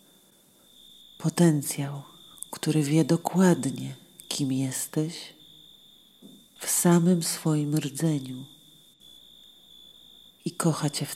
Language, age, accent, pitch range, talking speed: Polish, 40-59, native, 145-170 Hz, 75 wpm